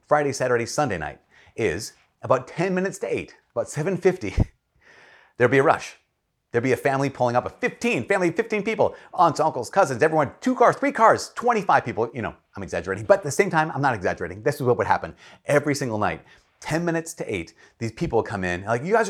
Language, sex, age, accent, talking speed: English, male, 30-49, American, 210 wpm